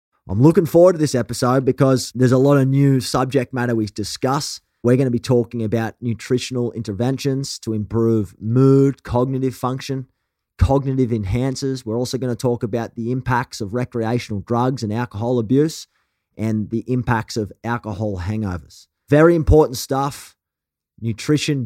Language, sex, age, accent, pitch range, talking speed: English, male, 30-49, Australian, 110-130 Hz, 150 wpm